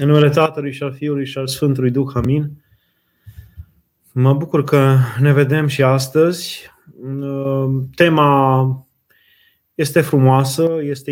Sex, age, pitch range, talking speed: male, 20-39, 125-145 Hz, 115 wpm